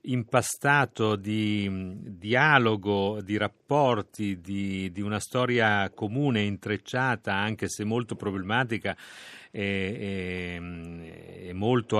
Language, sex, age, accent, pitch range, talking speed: Italian, male, 40-59, native, 95-115 Hz, 90 wpm